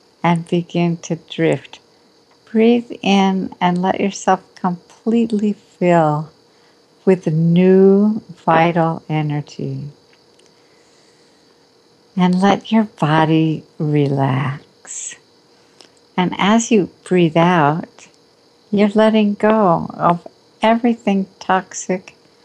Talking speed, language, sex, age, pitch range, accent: 85 wpm, English, female, 60-79, 155-195 Hz, American